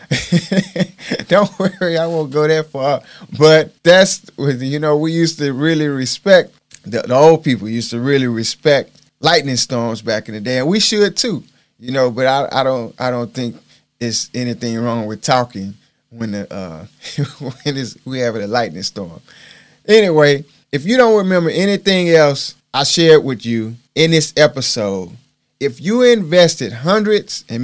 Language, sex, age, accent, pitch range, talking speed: English, male, 30-49, American, 120-165 Hz, 165 wpm